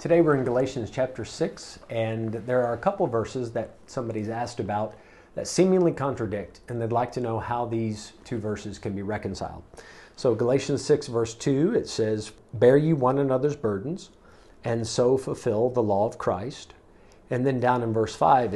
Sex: male